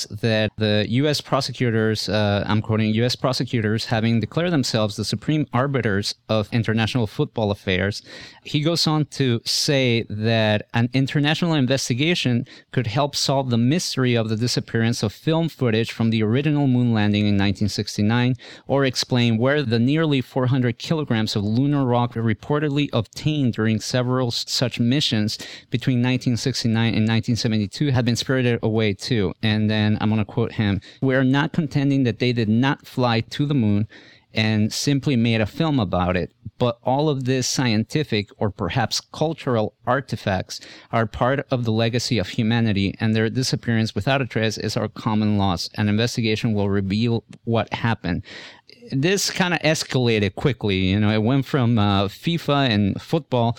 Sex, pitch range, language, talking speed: male, 110-135 Hz, English, 160 wpm